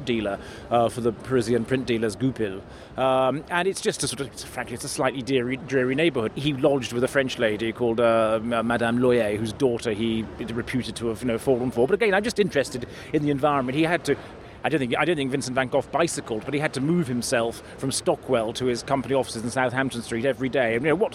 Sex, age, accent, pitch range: male, 30-49, British, 120-135 Hz